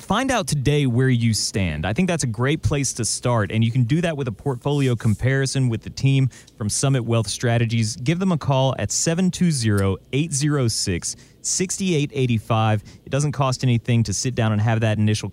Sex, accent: male, American